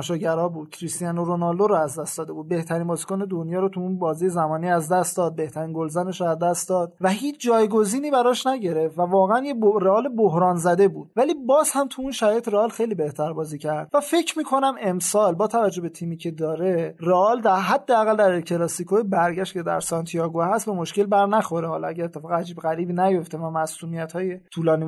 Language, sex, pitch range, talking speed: Persian, male, 165-195 Hz, 205 wpm